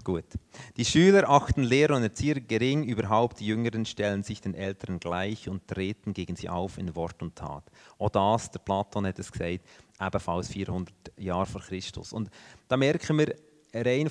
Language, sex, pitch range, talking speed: German, male, 100-135 Hz, 180 wpm